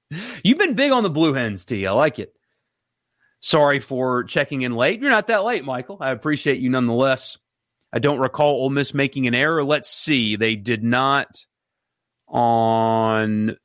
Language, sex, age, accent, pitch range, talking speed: English, male, 30-49, American, 115-155 Hz, 170 wpm